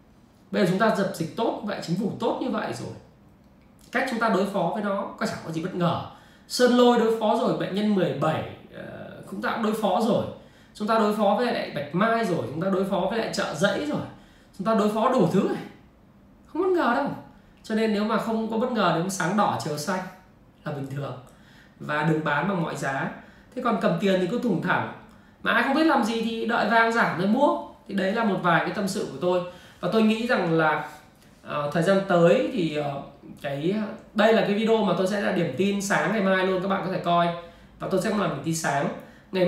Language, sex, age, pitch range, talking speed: Vietnamese, male, 20-39, 165-210 Hz, 250 wpm